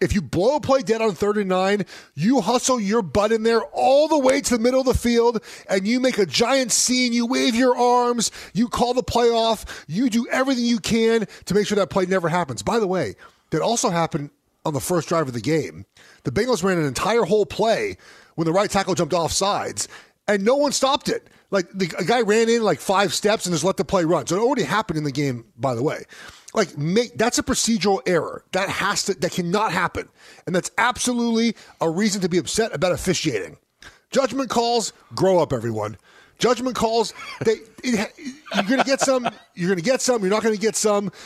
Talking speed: 225 wpm